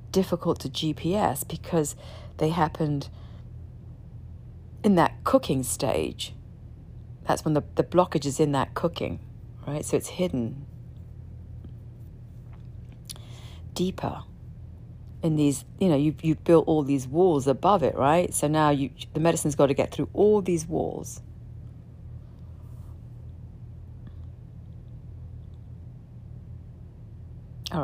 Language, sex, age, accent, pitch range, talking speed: English, female, 50-69, British, 110-150 Hz, 110 wpm